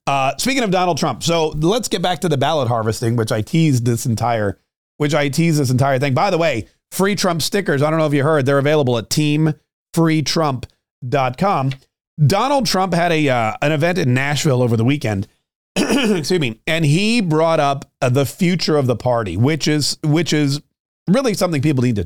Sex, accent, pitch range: male, American, 130-170 Hz